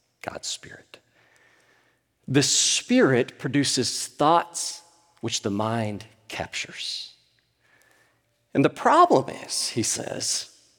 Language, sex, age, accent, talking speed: English, male, 40-59, American, 90 wpm